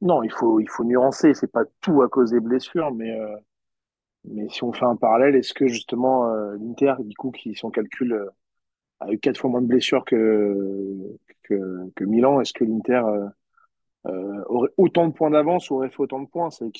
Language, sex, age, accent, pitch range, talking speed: French, male, 40-59, French, 120-150 Hz, 220 wpm